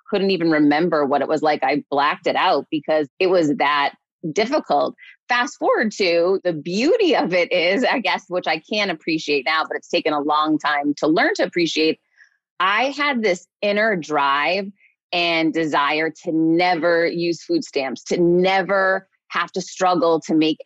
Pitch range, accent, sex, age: 160-205 Hz, American, female, 30-49